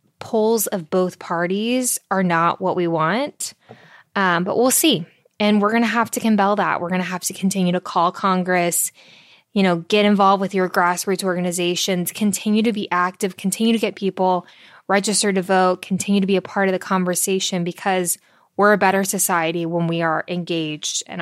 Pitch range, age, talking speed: 180-215 Hz, 10-29, 190 wpm